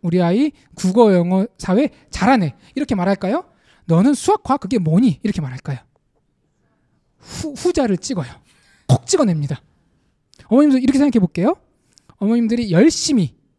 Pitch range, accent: 175-270 Hz, native